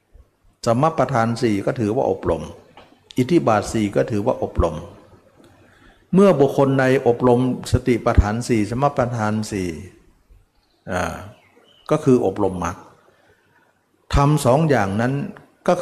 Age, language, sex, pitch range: 60-79, Thai, male, 100-130 Hz